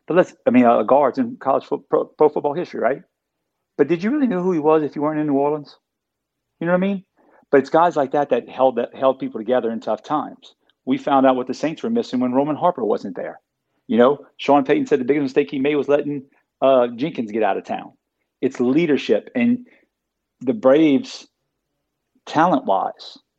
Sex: male